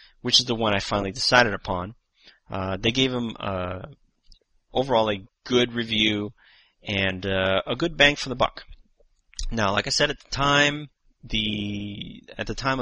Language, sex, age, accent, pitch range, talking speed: English, male, 30-49, American, 100-125 Hz, 170 wpm